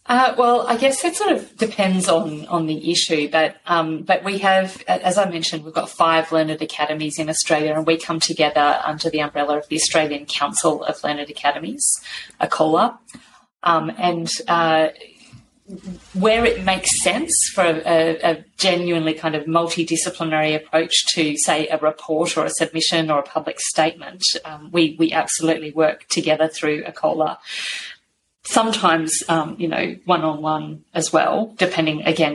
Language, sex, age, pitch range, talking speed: English, female, 30-49, 155-175 Hz, 160 wpm